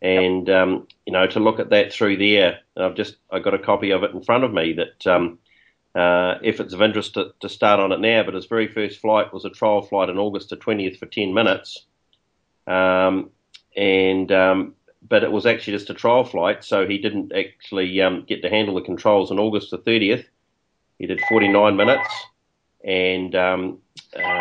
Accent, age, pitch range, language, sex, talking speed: Australian, 40-59, 95-110 Hz, English, male, 200 wpm